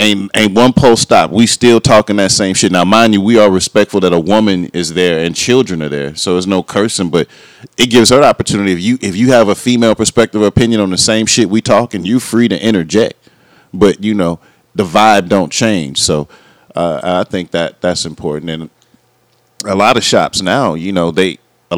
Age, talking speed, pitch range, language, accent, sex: 40-59, 225 wpm, 80-100 Hz, English, American, male